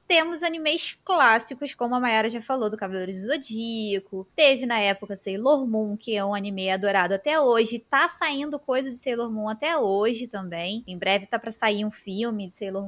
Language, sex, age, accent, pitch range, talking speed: Portuguese, female, 20-39, Brazilian, 200-285 Hz, 195 wpm